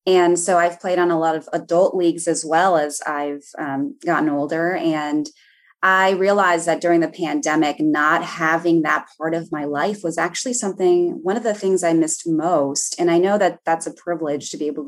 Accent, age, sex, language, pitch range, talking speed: American, 20-39, female, English, 165-215 Hz, 205 wpm